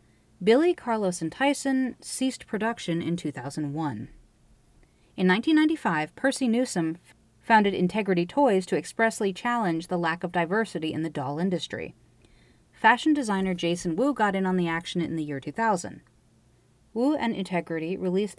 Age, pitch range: 30-49, 160-210 Hz